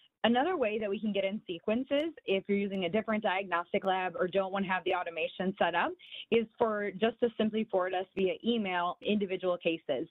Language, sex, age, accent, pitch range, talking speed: English, female, 20-39, American, 175-205 Hz, 210 wpm